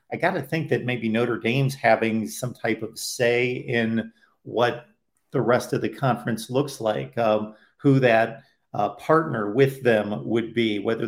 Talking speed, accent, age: 175 wpm, American, 50-69